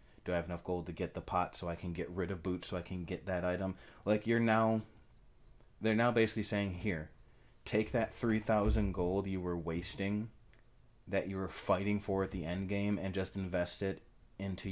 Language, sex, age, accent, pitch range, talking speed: English, male, 30-49, American, 90-105 Hz, 210 wpm